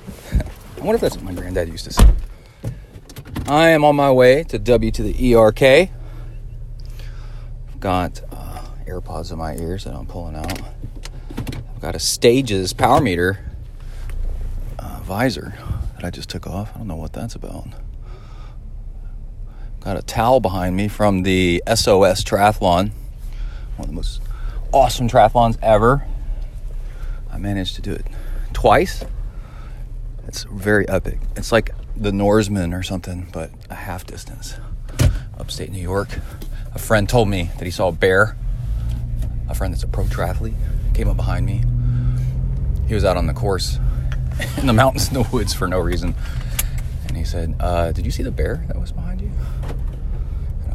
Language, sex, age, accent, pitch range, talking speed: English, male, 40-59, American, 90-115 Hz, 160 wpm